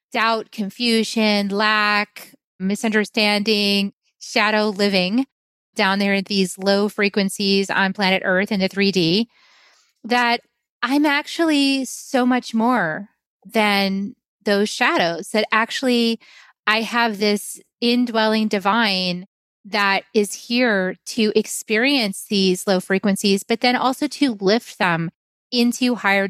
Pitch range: 195-245 Hz